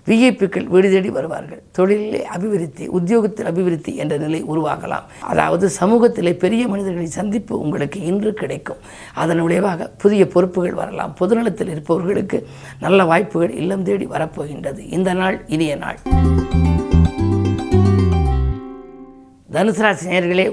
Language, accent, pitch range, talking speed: Tamil, native, 160-205 Hz, 110 wpm